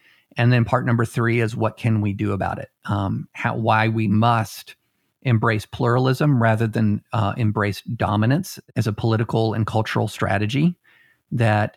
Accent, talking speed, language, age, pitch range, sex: American, 160 wpm, English, 50-69, 110-125 Hz, male